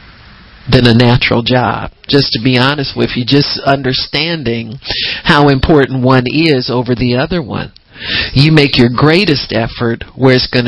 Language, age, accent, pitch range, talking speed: English, 50-69, American, 125-160 Hz, 155 wpm